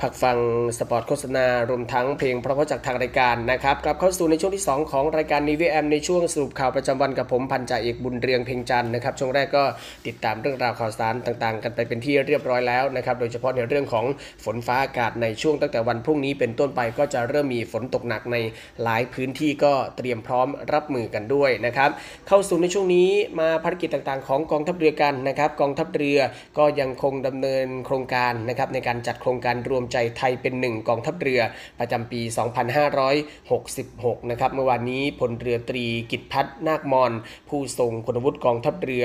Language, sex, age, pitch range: Thai, male, 20-39, 120-145 Hz